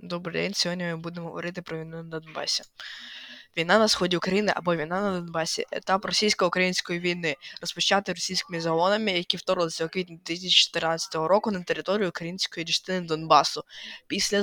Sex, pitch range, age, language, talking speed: female, 165-190 Hz, 20-39, Ukrainian, 150 wpm